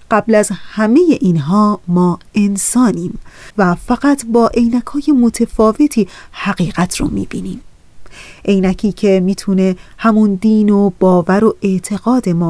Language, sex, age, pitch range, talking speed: Persian, female, 30-49, 190-235 Hz, 115 wpm